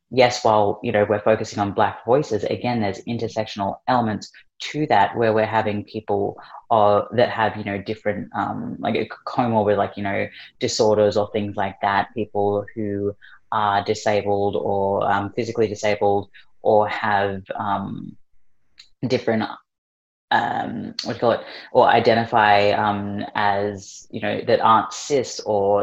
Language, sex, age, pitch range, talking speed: English, female, 20-39, 100-115 Hz, 155 wpm